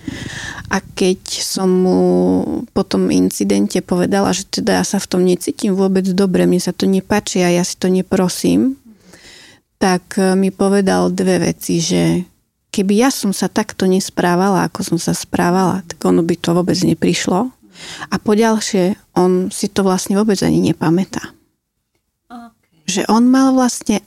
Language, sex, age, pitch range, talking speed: Slovak, female, 30-49, 175-210 Hz, 150 wpm